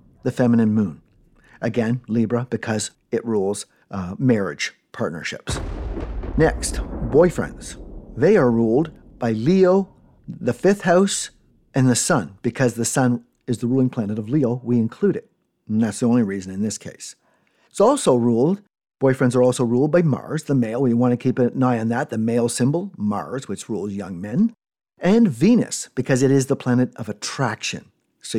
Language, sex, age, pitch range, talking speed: English, male, 50-69, 115-150 Hz, 170 wpm